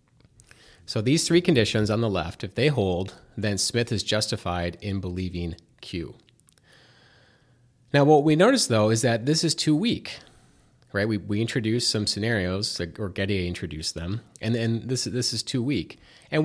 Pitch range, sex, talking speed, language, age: 105-155 Hz, male, 170 wpm, English, 30-49